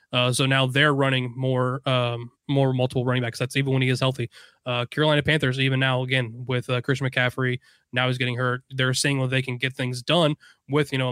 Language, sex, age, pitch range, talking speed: English, male, 20-39, 130-150 Hz, 225 wpm